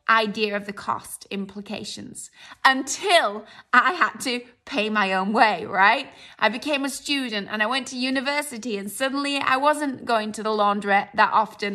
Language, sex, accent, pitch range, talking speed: English, female, British, 210-255 Hz, 170 wpm